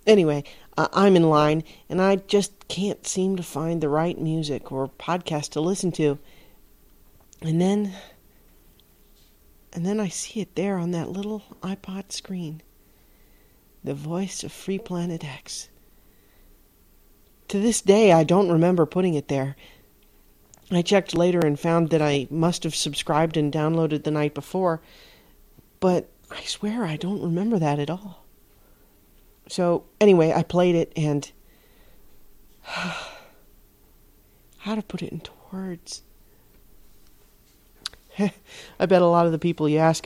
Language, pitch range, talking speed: English, 155-190 Hz, 140 wpm